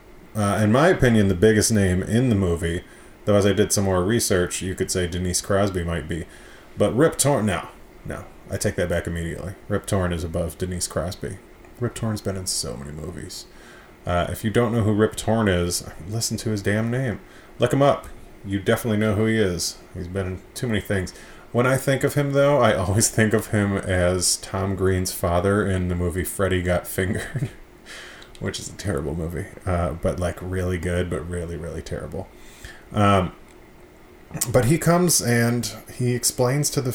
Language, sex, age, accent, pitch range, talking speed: English, male, 30-49, American, 90-115 Hz, 195 wpm